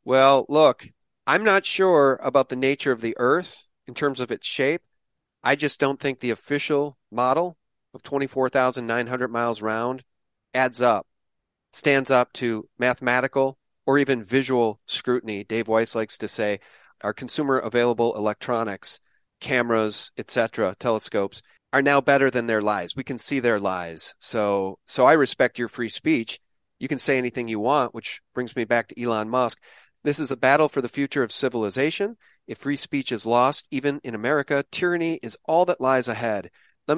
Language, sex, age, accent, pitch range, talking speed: English, male, 40-59, American, 115-140 Hz, 170 wpm